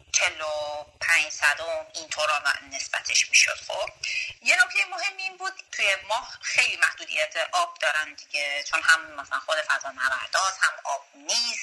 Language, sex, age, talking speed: Persian, female, 30-49, 145 wpm